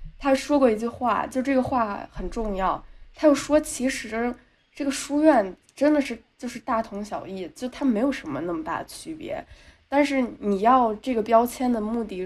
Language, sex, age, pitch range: Chinese, female, 20-39, 205-280 Hz